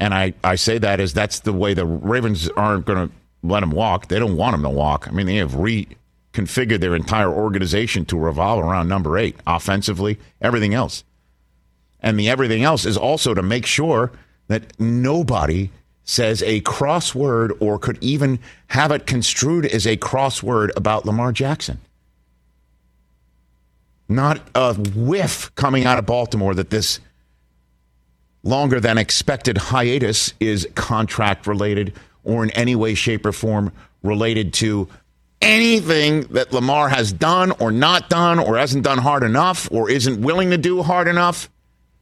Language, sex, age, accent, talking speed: English, male, 50-69, American, 155 wpm